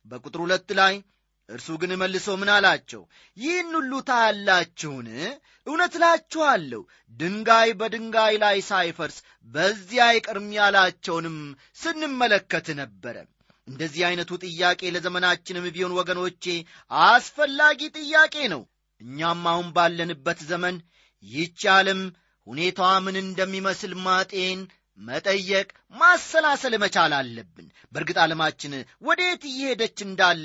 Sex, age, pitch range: male, 30-49, 170-250 Hz